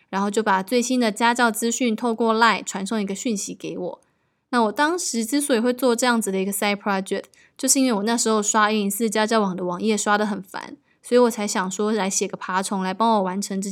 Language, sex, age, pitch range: Chinese, female, 20-39, 200-245 Hz